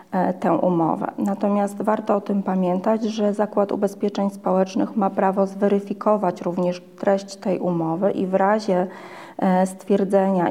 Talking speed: 125 wpm